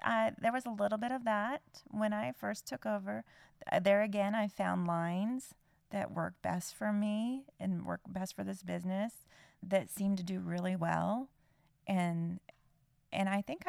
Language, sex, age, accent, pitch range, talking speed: English, female, 30-49, American, 170-205 Hz, 170 wpm